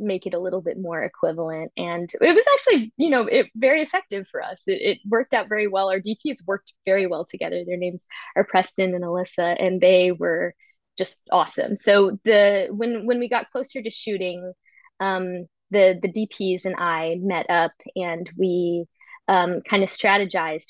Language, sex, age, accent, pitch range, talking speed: English, female, 20-39, American, 175-210 Hz, 185 wpm